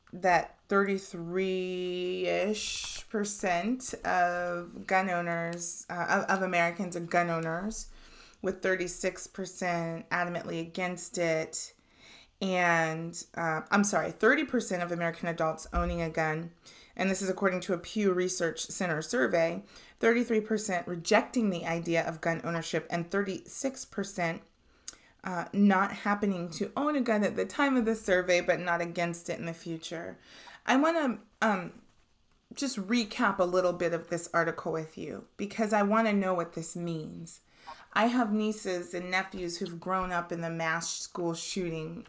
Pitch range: 170-200 Hz